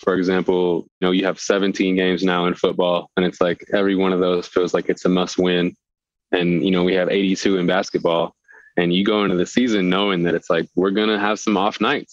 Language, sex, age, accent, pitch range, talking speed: English, male, 20-39, American, 90-95 Hz, 240 wpm